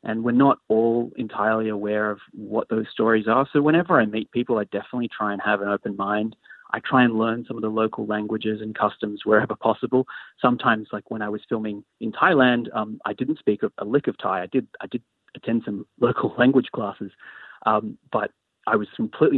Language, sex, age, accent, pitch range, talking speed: English, male, 30-49, Australian, 105-115 Hz, 205 wpm